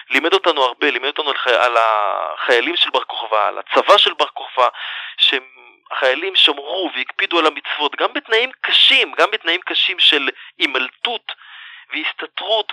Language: Hebrew